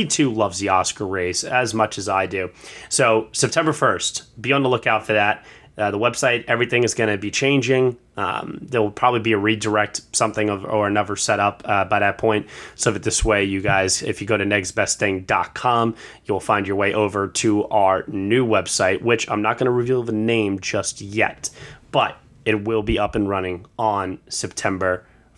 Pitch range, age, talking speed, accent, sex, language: 100-120 Hz, 30-49, 195 wpm, American, male, English